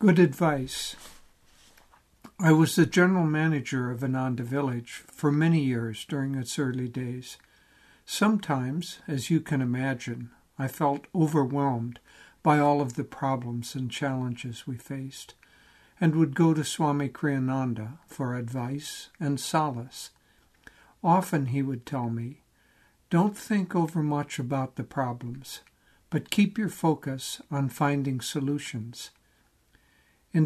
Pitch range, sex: 125-160 Hz, male